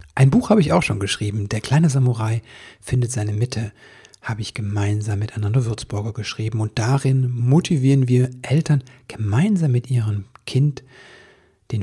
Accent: German